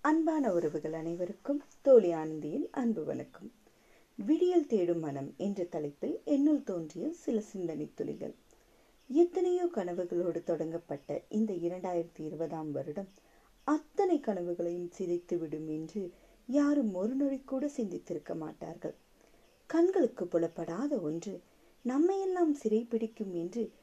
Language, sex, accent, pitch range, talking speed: Tamil, female, native, 175-280 Hz, 105 wpm